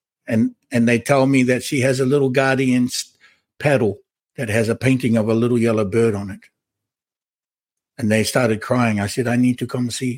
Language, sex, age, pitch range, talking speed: English, male, 60-79, 130-165 Hz, 200 wpm